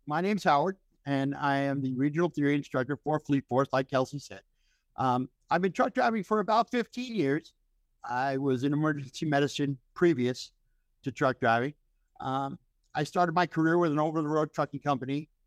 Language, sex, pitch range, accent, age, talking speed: English, male, 130-160 Hz, American, 50-69, 170 wpm